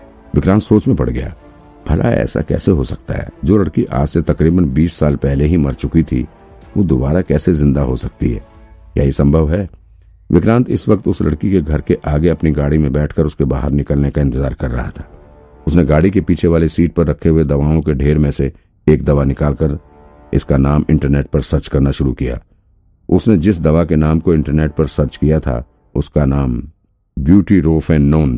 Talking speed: 205 wpm